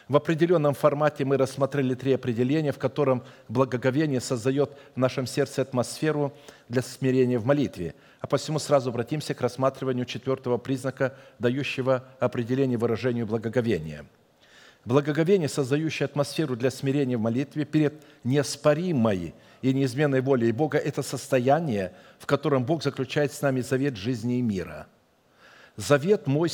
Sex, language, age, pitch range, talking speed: male, Russian, 50-69, 125-150 Hz, 135 wpm